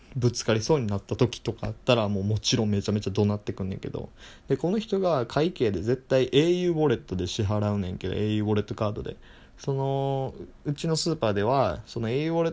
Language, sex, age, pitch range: Japanese, male, 20-39, 110-140 Hz